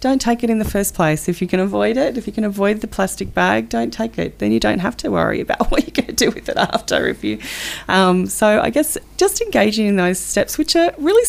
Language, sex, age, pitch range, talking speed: English, female, 30-49, 160-260 Hz, 260 wpm